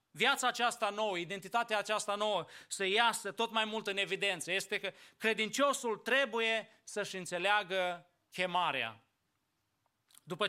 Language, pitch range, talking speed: English, 195-230 Hz, 120 wpm